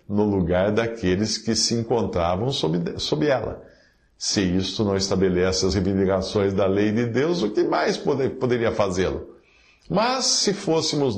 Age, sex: 50-69, male